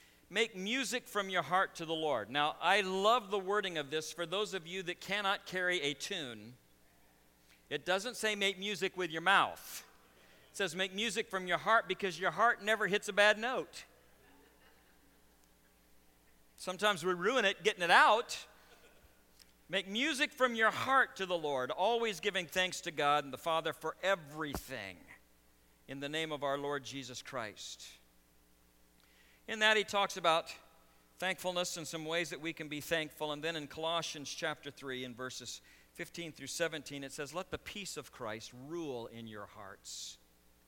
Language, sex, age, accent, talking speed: English, male, 50-69, American, 170 wpm